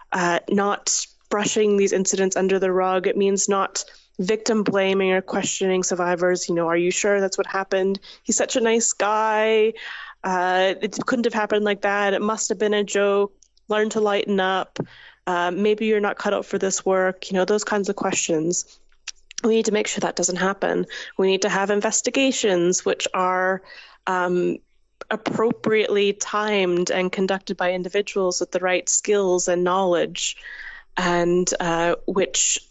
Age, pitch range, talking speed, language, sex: 20-39, 180-205 Hz, 170 wpm, English, female